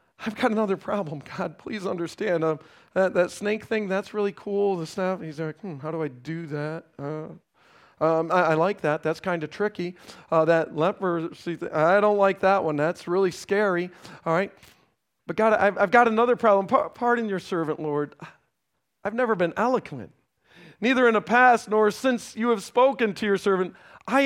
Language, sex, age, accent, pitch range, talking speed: English, male, 40-59, American, 160-240 Hz, 190 wpm